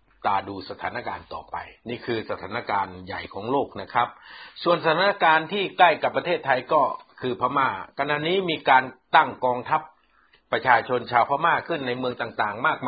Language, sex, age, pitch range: Thai, male, 60-79, 120-160 Hz